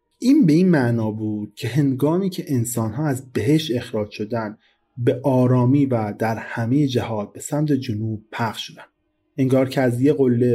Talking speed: 160 wpm